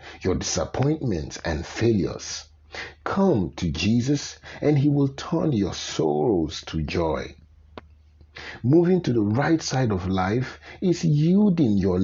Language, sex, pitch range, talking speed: English, male, 85-135 Hz, 125 wpm